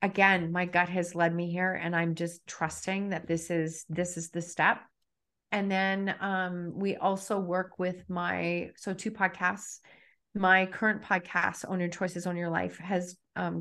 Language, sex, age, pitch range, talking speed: English, female, 30-49, 170-190 Hz, 175 wpm